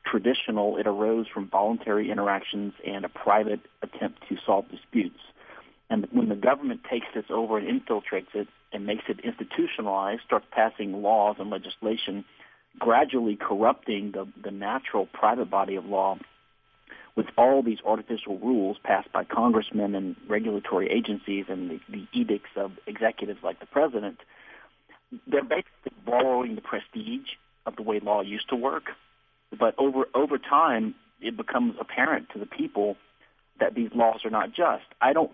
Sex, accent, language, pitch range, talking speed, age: male, American, English, 100-125 Hz, 155 wpm, 50-69